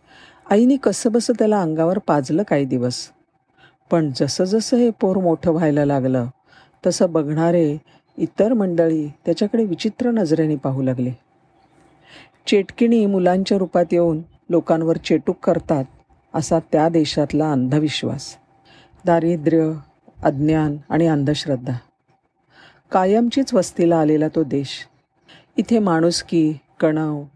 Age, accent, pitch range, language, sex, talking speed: 50-69, native, 155-195 Hz, Marathi, female, 100 wpm